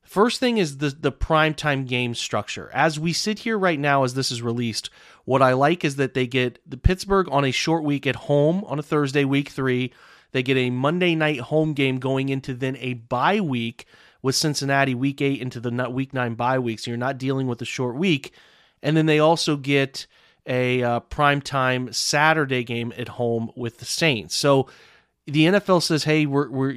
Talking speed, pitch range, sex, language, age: 205 wpm, 125-150 Hz, male, English, 30-49